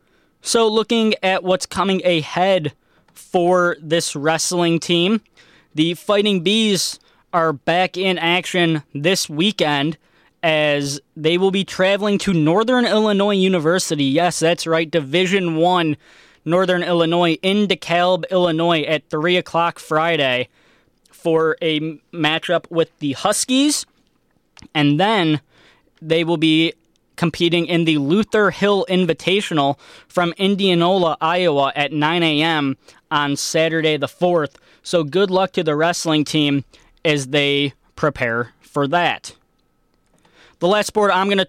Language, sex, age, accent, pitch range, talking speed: English, male, 20-39, American, 155-185 Hz, 125 wpm